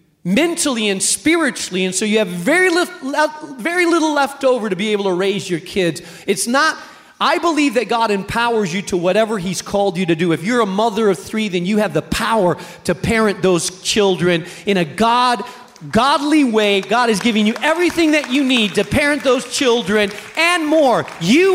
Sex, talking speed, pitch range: male, 190 wpm, 165-275 Hz